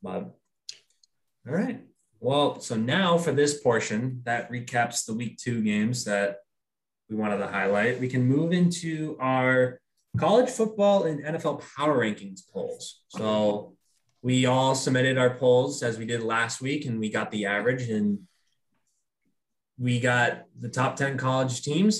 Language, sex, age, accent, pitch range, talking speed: English, male, 20-39, American, 115-140 Hz, 155 wpm